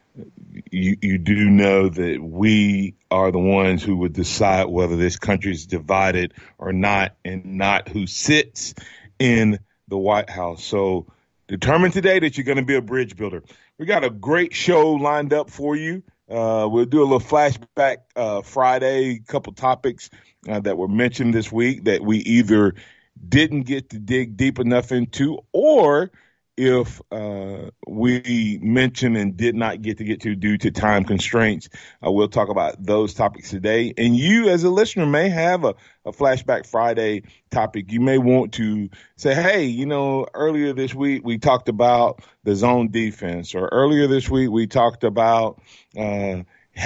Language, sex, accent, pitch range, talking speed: English, male, American, 100-130 Hz, 170 wpm